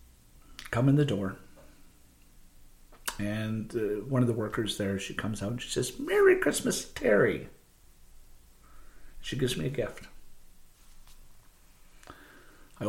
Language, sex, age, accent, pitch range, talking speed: English, male, 50-69, American, 100-140 Hz, 120 wpm